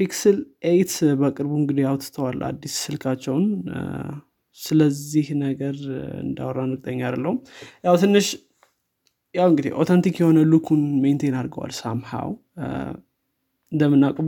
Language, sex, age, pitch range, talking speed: Amharic, male, 20-39, 135-160 Hz, 100 wpm